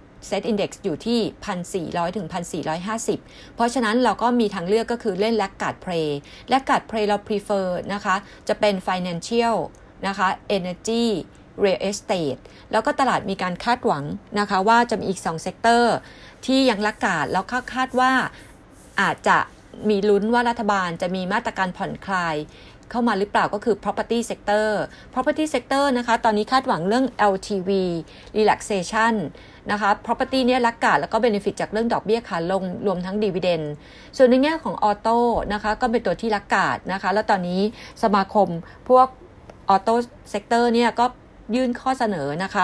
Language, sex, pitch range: Thai, female, 190-235 Hz